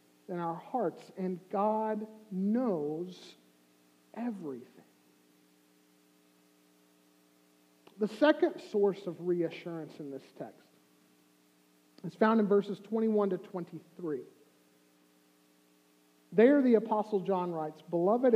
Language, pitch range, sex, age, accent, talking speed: English, 150-245 Hz, male, 50-69, American, 90 wpm